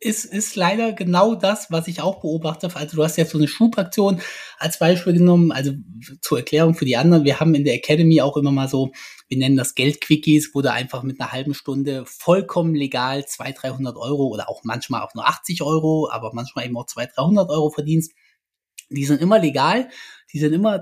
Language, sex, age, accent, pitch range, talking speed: German, male, 20-39, German, 130-160 Hz, 210 wpm